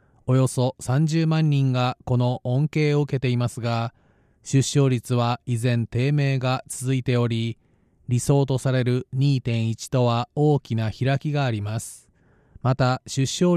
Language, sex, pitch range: Japanese, male, 120-145 Hz